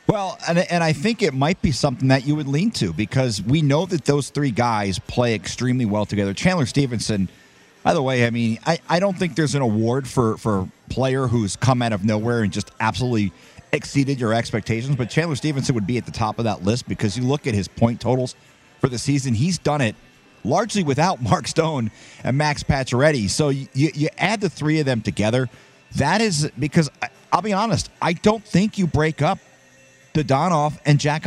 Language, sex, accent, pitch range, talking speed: English, male, American, 120-160 Hz, 210 wpm